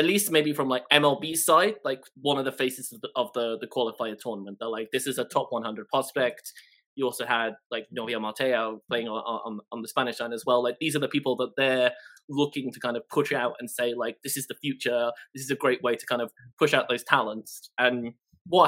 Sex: male